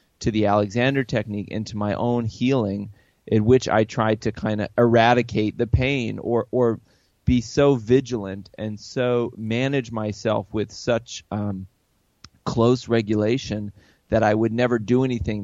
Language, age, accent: English, 30-49, American